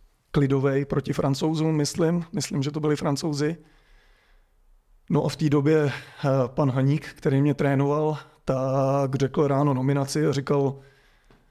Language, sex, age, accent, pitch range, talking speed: Czech, male, 30-49, native, 135-155 Hz, 130 wpm